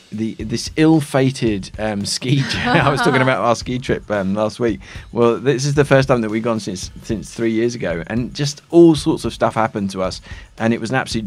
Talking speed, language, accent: 225 wpm, Spanish, British